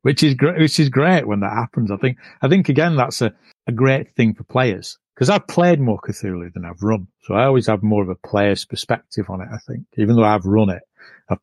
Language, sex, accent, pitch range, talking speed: English, male, British, 95-115 Hz, 250 wpm